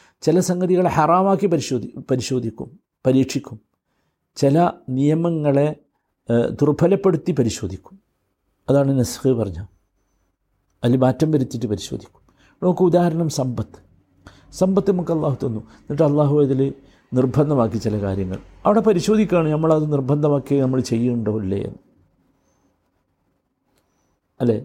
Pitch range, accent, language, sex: 125-170 Hz, native, Malayalam, male